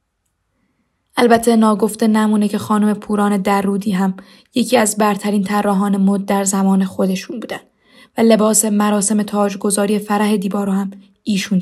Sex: female